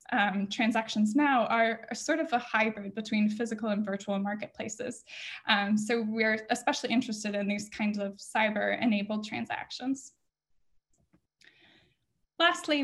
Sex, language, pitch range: female, English, 210-240 Hz